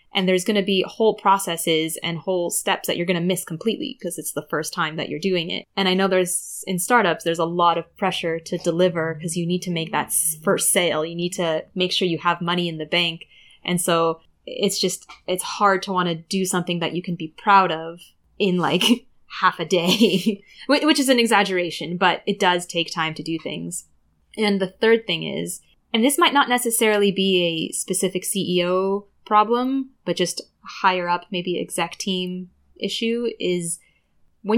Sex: female